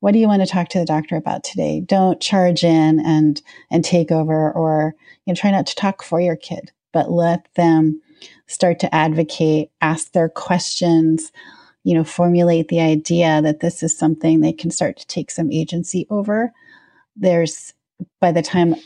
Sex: female